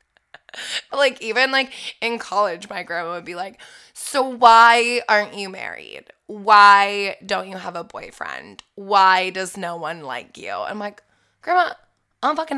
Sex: female